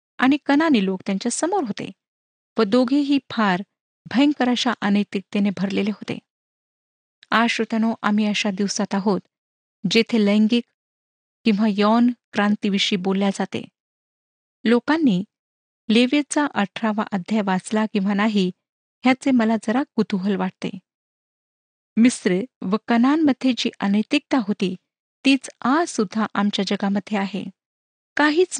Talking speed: 105 wpm